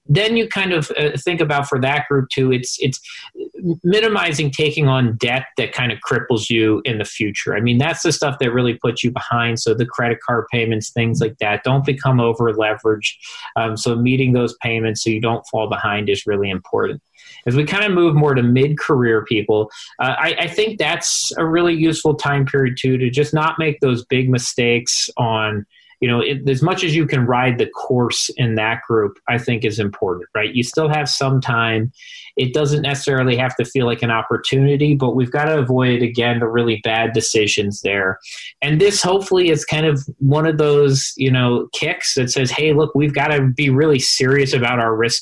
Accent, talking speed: American, 205 wpm